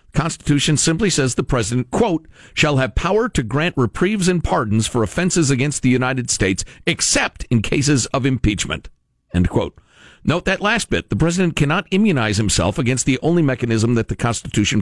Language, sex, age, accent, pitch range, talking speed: English, male, 50-69, American, 120-170 Hz, 175 wpm